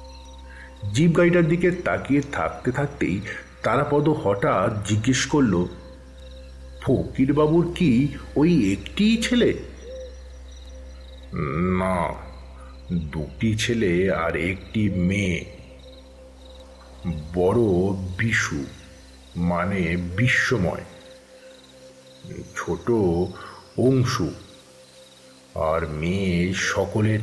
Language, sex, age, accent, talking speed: Bengali, male, 50-69, native, 70 wpm